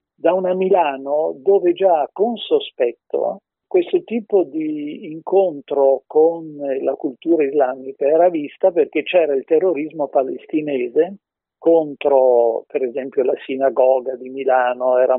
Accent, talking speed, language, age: native, 120 wpm, Italian, 50-69